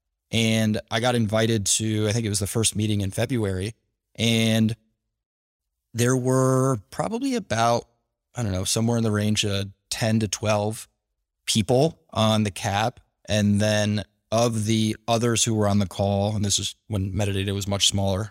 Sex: male